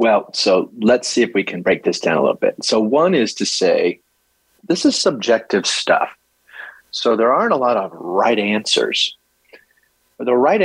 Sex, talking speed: male, 180 wpm